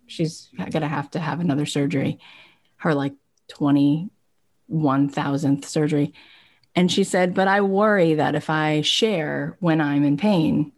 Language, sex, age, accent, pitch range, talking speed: English, female, 30-49, American, 155-205 Hz, 145 wpm